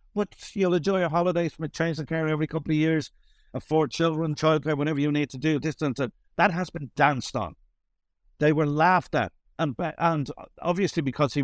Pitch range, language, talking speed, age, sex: 120-160 Hz, English, 200 wpm, 60-79, male